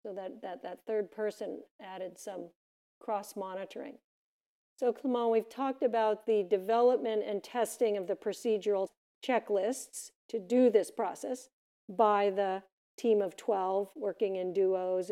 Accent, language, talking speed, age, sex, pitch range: American, English, 135 wpm, 50-69, female, 195-235 Hz